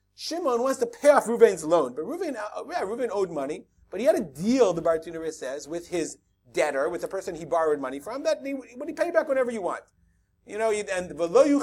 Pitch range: 170-275 Hz